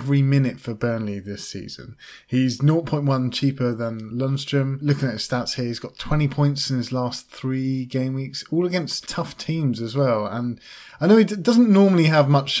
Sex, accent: male, British